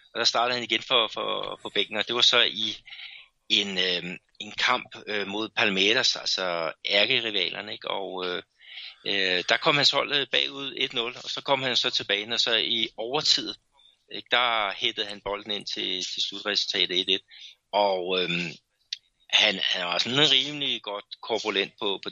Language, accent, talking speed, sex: Danish, native, 170 wpm, male